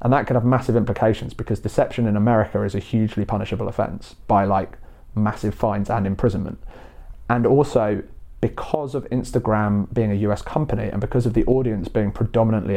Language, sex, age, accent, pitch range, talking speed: English, male, 30-49, British, 105-130 Hz, 175 wpm